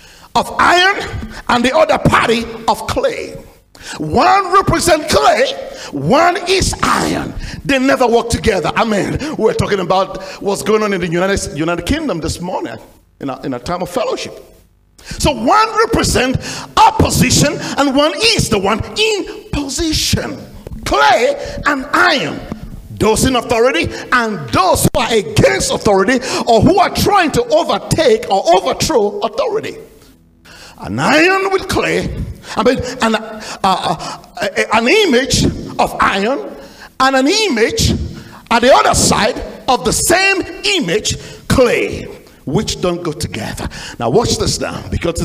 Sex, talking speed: male, 140 wpm